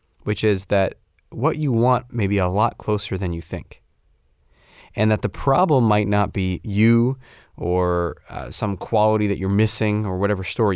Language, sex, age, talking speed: English, male, 30-49, 180 wpm